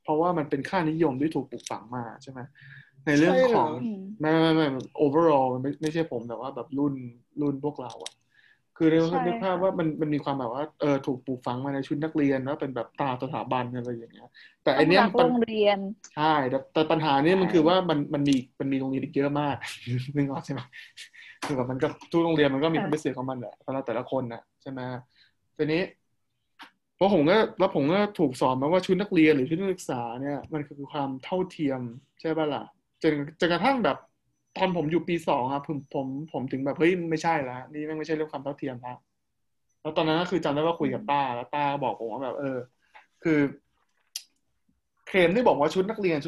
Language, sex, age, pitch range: Thai, male, 20-39, 130-165 Hz